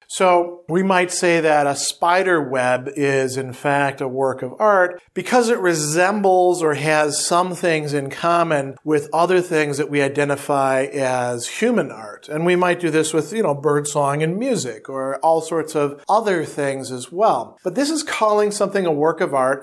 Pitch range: 140-175 Hz